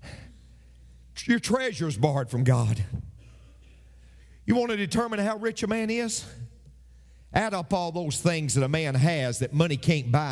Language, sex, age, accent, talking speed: English, male, 50-69, American, 165 wpm